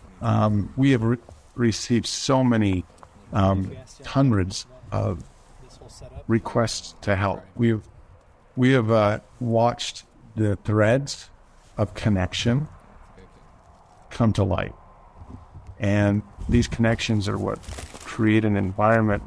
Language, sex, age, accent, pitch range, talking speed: English, male, 50-69, American, 100-120 Hz, 105 wpm